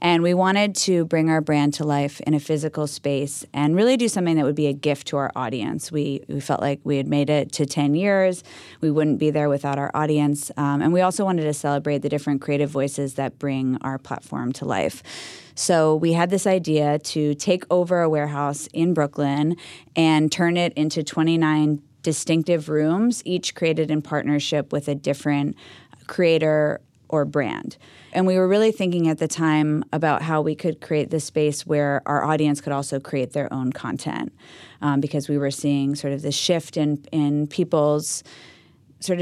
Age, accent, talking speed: 20-39, American, 195 wpm